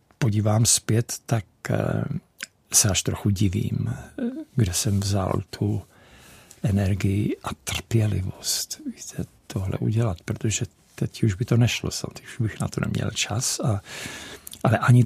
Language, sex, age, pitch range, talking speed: Czech, male, 50-69, 100-125 Hz, 130 wpm